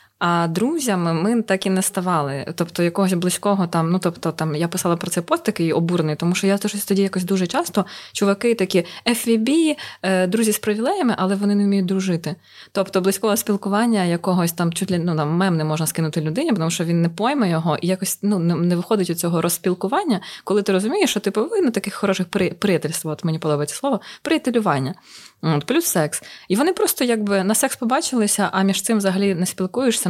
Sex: female